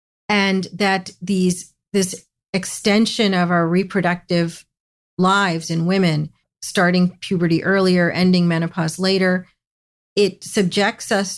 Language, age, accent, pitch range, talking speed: English, 40-59, American, 165-190 Hz, 105 wpm